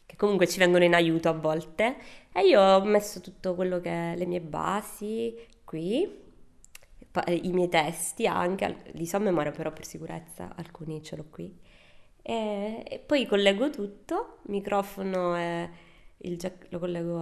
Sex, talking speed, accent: female, 155 wpm, native